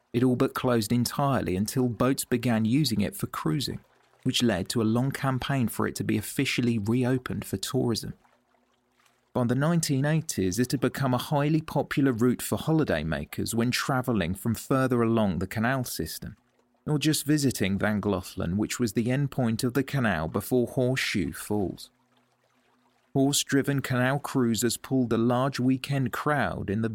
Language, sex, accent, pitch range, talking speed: English, male, British, 115-130 Hz, 160 wpm